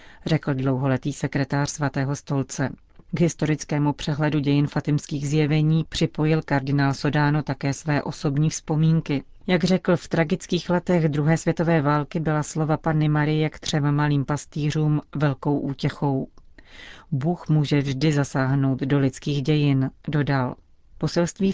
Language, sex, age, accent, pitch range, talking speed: Czech, female, 40-59, native, 145-160 Hz, 125 wpm